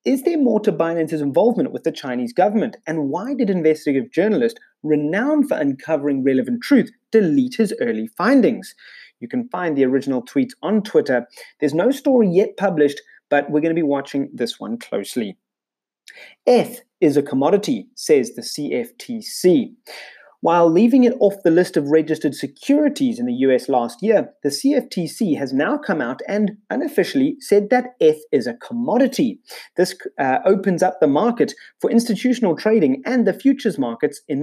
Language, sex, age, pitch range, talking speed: English, male, 30-49, 160-250 Hz, 165 wpm